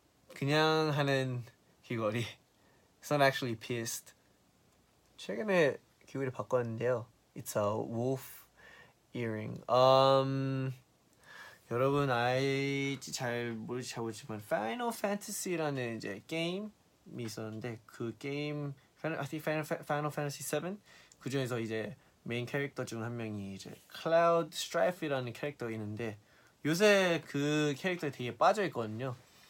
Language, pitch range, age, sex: Korean, 115-150 Hz, 20-39, male